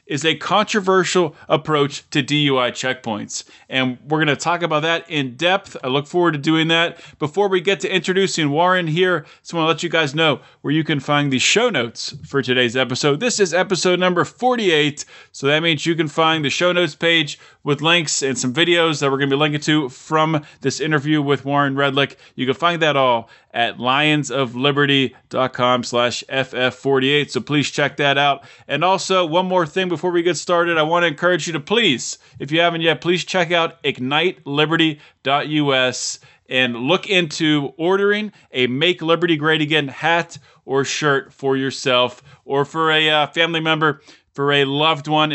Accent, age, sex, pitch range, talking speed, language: American, 20-39, male, 140-165 Hz, 180 wpm, English